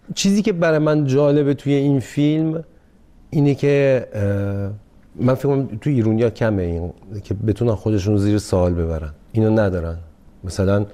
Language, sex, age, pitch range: Persian, male, 40-59, 100-130 Hz